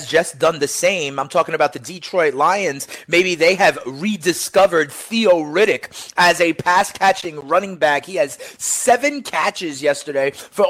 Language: English